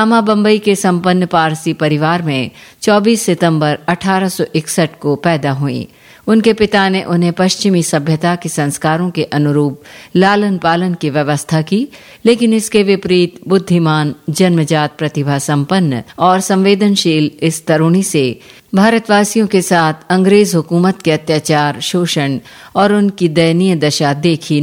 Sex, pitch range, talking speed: female, 150-195 Hz, 130 wpm